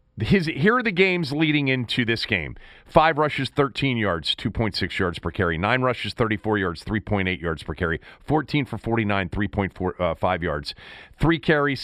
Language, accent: English, American